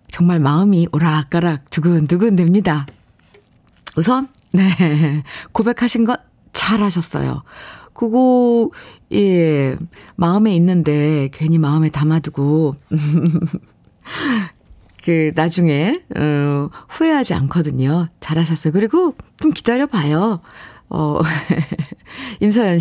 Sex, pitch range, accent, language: female, 155-225 Hz, native, Korean